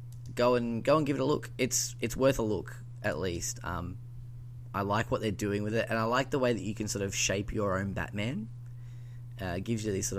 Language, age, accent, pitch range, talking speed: English, 10-29, Australian, 105-120 Hz, 245 wpm